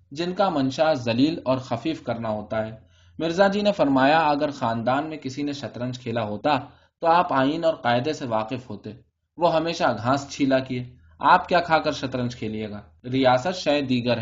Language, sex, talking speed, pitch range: Urdu, male, 180 wpm, 120-145 Hz